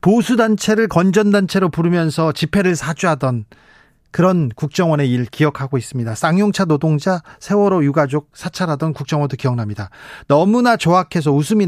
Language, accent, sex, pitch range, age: Korean, native, male, 135-195 Hz, 40-59